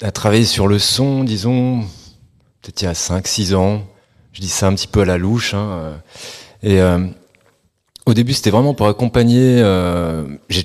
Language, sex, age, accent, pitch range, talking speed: French, male, 30-49, French, 90-115 Hz, 185 wpm